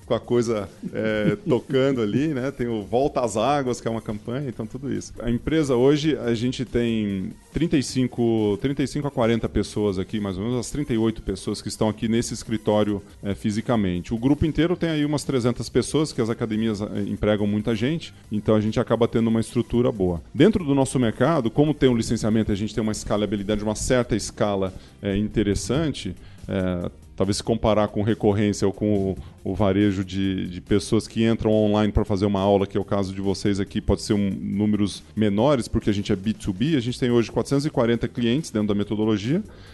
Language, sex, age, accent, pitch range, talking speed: Portuguese, male, 20-39, Brazilian, 105-130 Hz, 200 wpm